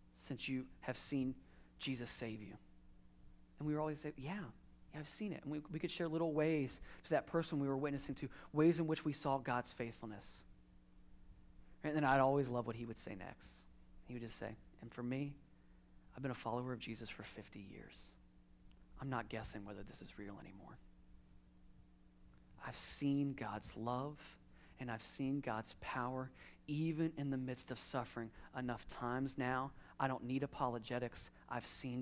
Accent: American